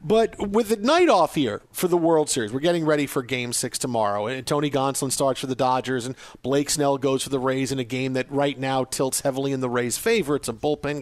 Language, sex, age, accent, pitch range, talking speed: English, male, 40-59, American, 140-190 Hz, 245 wpm